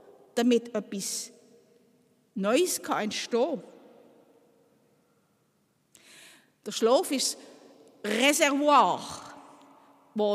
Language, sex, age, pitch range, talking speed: German, female, 50-69, 220-280 Hz, 65 wpm